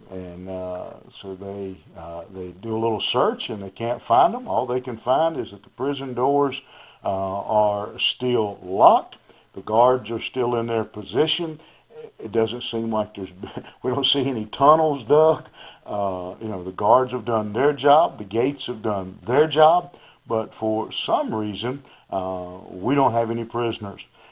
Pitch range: 100-125 Hz